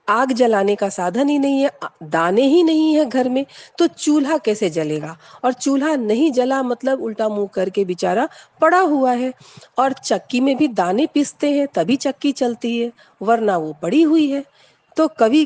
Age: 50-69